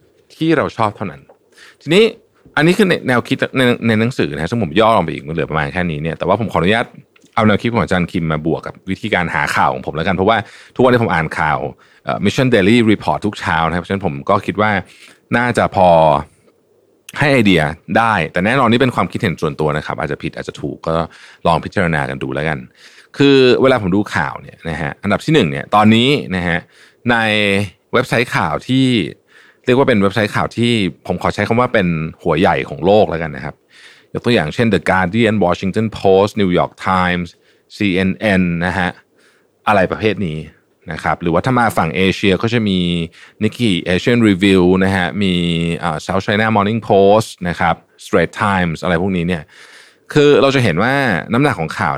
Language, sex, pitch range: Thai, male, 85-110 Hz